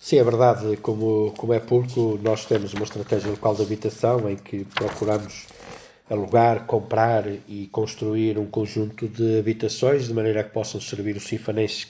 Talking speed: 165 wpm